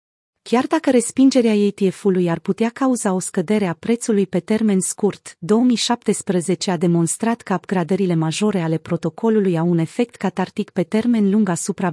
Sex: female